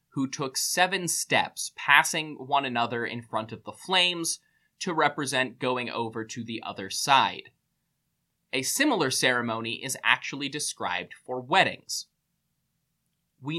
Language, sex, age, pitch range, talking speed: English, male, 20-39, 130-165 Hz, 130 wpm